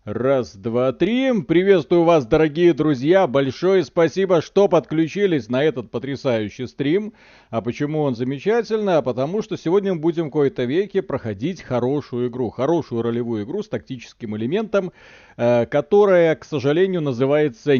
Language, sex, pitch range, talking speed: Russian, male, 120-165 Hz, 140 wpm